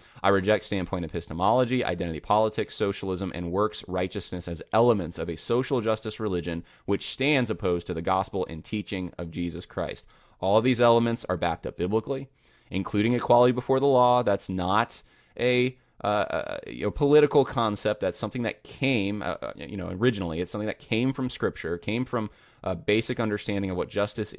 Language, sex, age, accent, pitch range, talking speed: English, male, 20-39, American, 90-120 Hz, 175 wpm